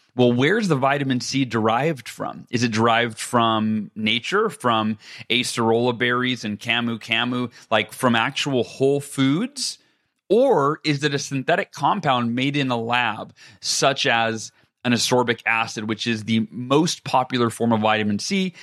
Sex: male